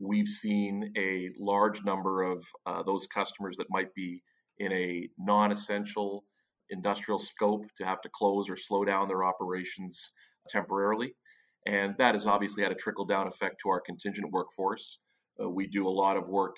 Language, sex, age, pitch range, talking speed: English, male, 40-59, 95-105 Hz, 170 wpm